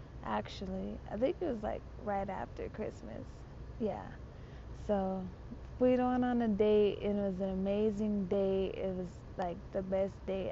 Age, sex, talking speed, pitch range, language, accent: 20-39, female, 155 wpm, 185-215 Hz, English, American